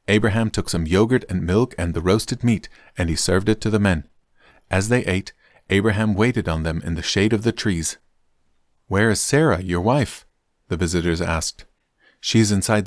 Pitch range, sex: 85-115 Hz, male